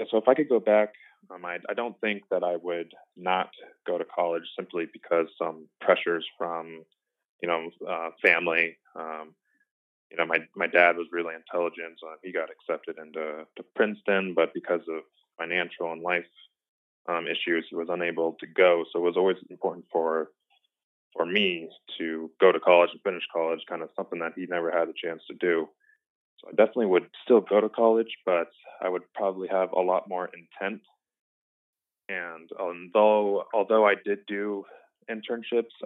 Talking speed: 180 wpm